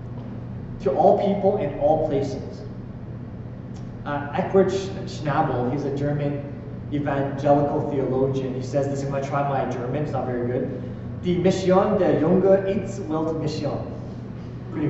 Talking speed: 135 wpm